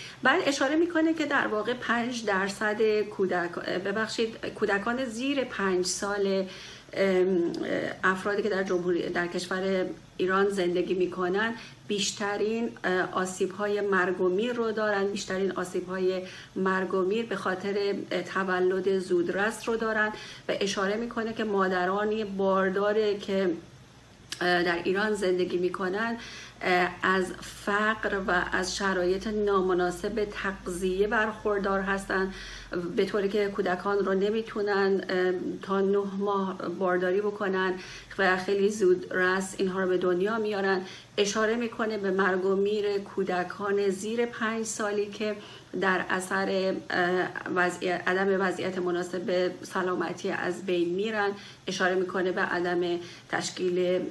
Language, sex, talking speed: Persian, female, 115 wpm